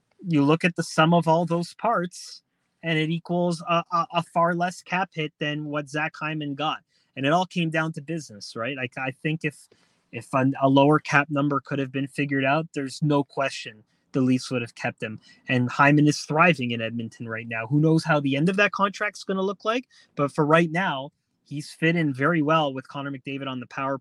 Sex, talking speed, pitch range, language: male, 230 wpm, 135-160 Hz, English